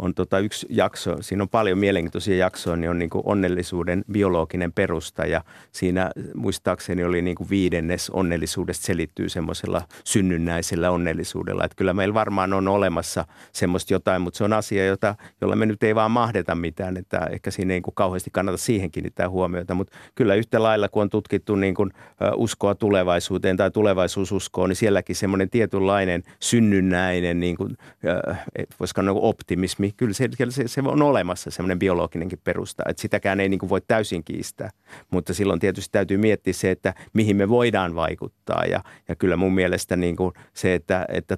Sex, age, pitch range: male, 50-69, 90-105 Hz